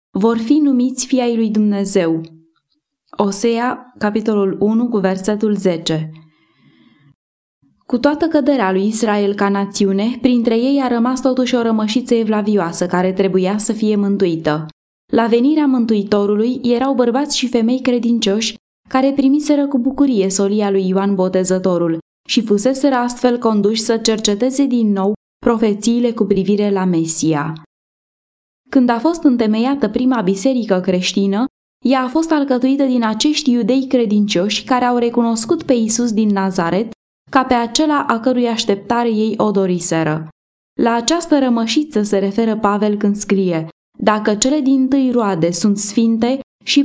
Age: 20-39